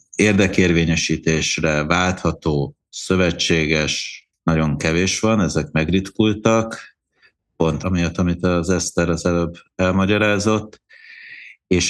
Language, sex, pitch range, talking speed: Hungarian, male, 80-100 Hz, 85 wpm